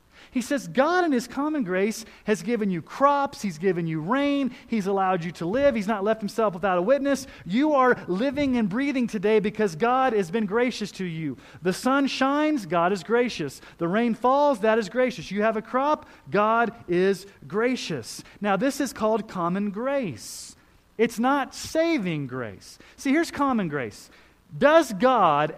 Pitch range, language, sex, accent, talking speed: 150-245 Hz, English, male, American, 175 wpm